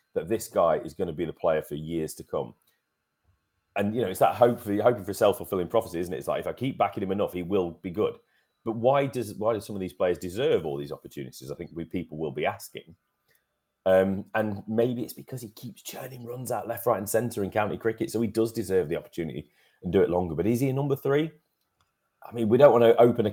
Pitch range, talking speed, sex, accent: 90-120 Hz, 255 wpm, male, British